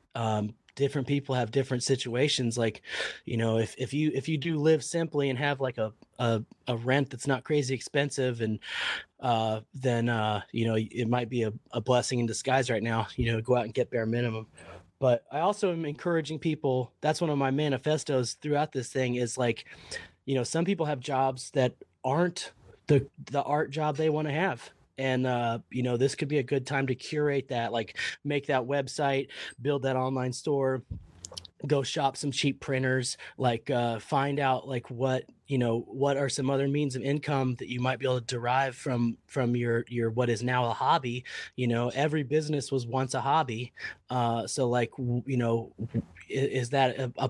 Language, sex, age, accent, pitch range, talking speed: English, male, 30-49, American, 120-140 Hz, 200 wpm